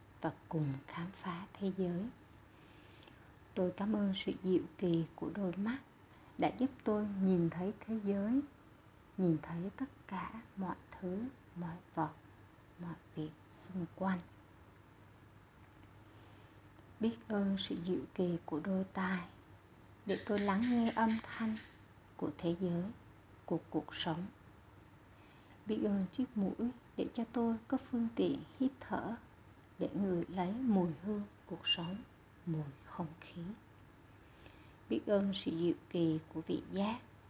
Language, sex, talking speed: Vietnamese, female, 135 wpm